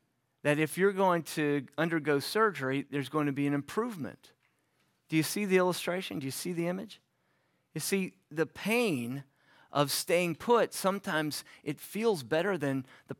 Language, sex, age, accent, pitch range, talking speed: English, male, 40-59, American, 130-170 Hz, 165 wpm